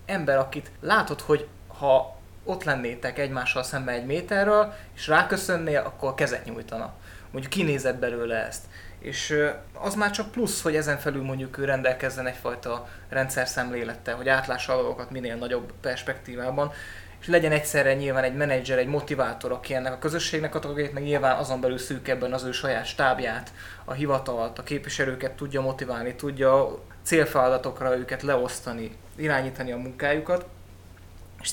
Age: 20-39